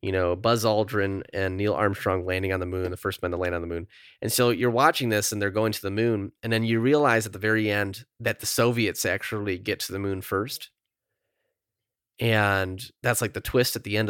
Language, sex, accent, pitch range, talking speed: English, male, American, 100-115 Hz, 235 wpm